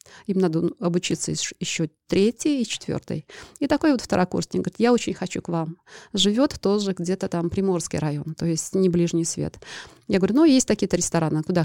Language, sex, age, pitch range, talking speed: Russian, female, 30-49, 170-215 Hz, 180 wpm